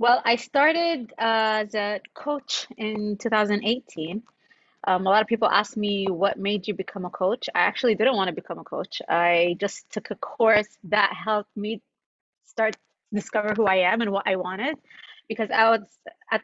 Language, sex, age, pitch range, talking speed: English, female, 20-39, 205-260 Hz, 190 wpm